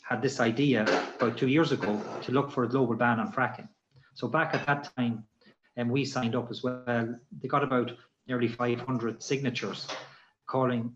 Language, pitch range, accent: English, 115-140 Hz, Irish